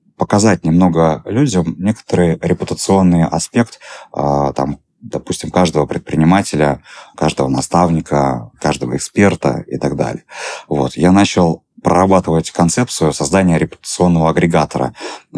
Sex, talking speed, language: male, 90 wpm, Russian